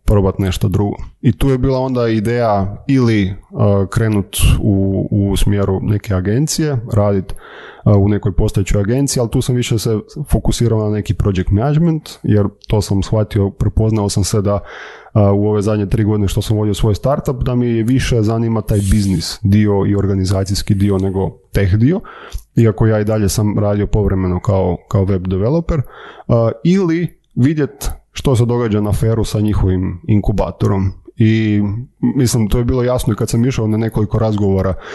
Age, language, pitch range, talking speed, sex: 20-39, Croatian, 100-120 Hz, 175 wpm, male